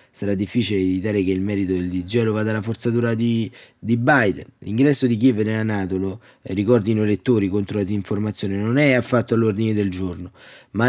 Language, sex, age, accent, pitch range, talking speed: Italian, male, 30-49, native, 100-130 Hz, 175 wpm